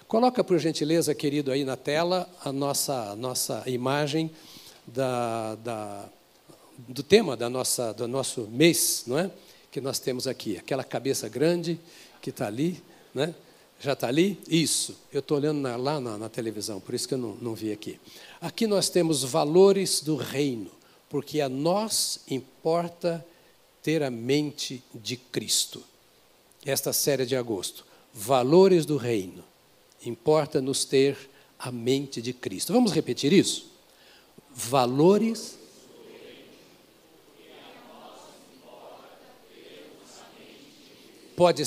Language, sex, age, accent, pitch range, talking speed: Portuguese, male, 60-79, Brazilian, 130-170 Hz, 115 wpm